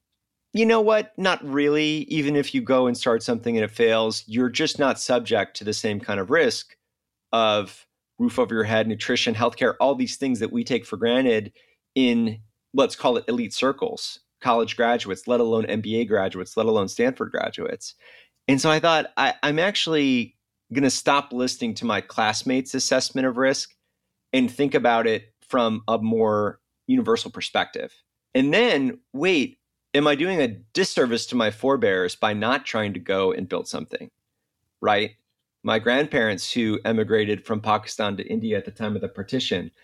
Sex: male